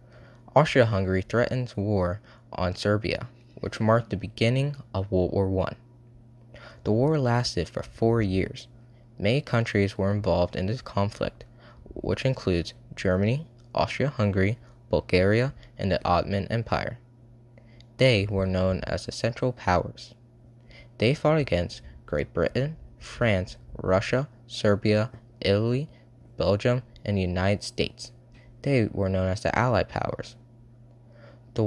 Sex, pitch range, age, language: male, 95-120 Hz, 20-39, English